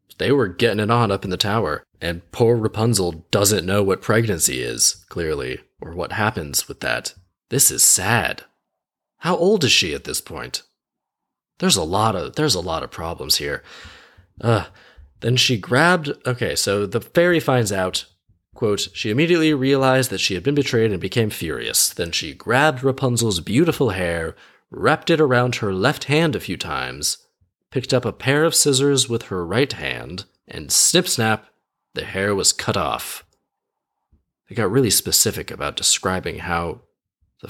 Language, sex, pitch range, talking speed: English, male, 100-140 Hz, 170 wpm